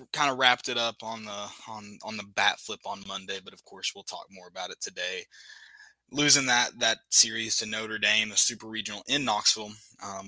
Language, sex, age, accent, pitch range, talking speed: English, male, 20-39, American, 100-130 Hz, 210 wpm